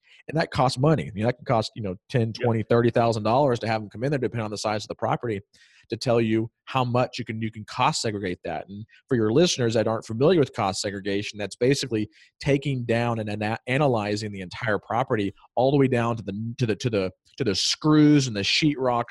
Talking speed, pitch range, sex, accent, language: 240 wpm, 100-125 Hz, male, American, English